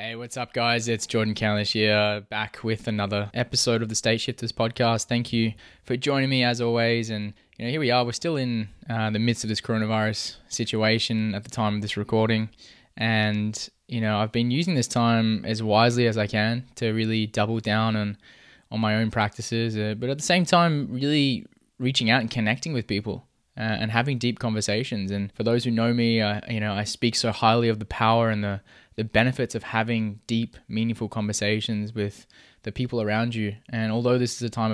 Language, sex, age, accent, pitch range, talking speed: English, male, 20-39, Australian, 105-120 Hz, 210 wpm